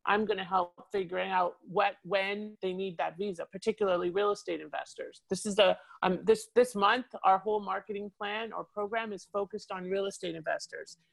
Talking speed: 190 wpm